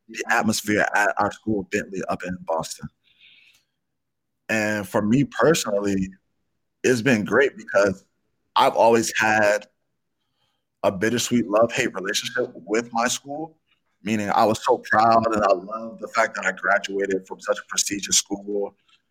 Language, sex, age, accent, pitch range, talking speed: English, male, 20-39, American, 100-115 Hz, 140 wpm